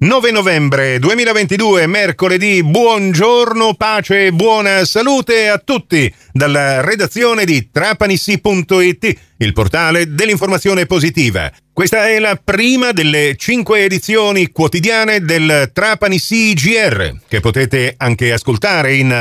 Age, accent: 40-59, native